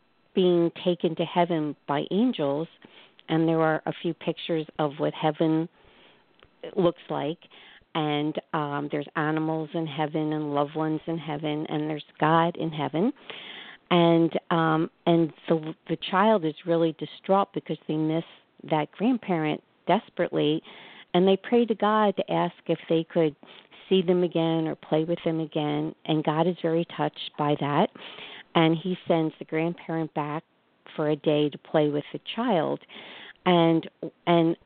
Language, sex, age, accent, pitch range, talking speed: English, female, 50-69, American, 155-185 Hz, 155 wpm